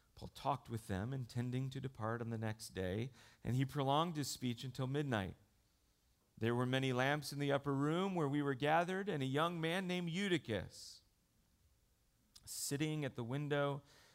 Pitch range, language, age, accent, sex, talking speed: 110-155 Hz, English, 40-59, American, male, 170 wpm